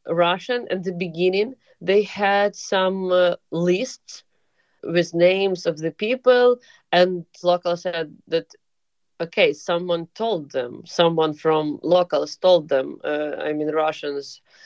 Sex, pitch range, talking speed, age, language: female, 150-180 Hz, 125 wpm, 20-39, Czech